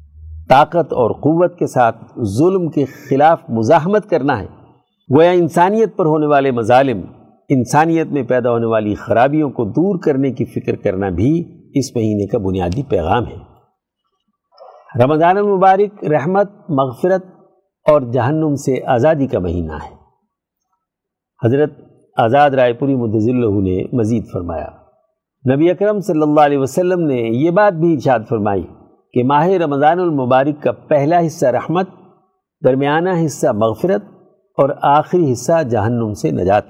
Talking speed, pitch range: 135 wpm, 125-180 Hz